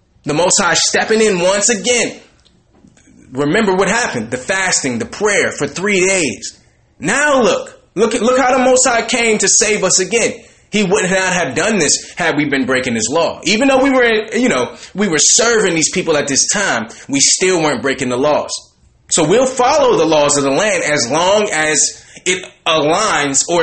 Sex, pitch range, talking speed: male, 150-220 Hz, 195 wpm